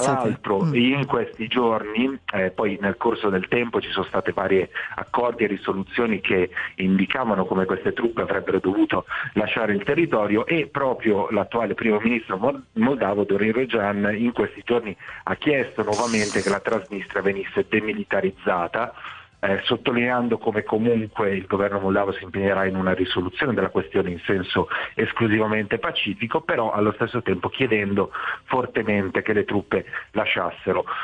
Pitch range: 100-125 Hz